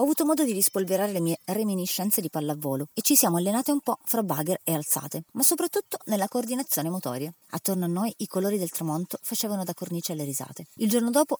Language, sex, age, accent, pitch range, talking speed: Italian, female, 30-49, native, 160-230 Hz, 210 wpm